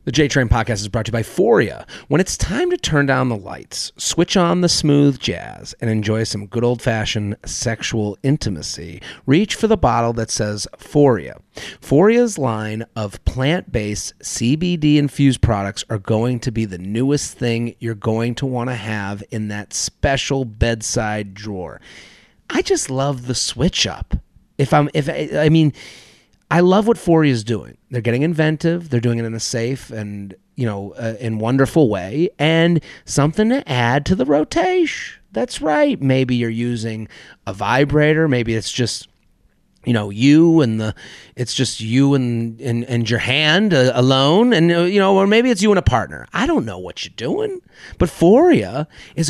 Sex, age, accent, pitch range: male, 30-49, American, 110-155 Hz